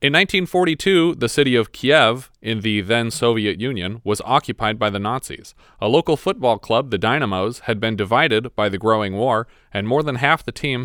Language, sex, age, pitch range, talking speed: English, male, 30-49, 105-140 Hz, 190 wpm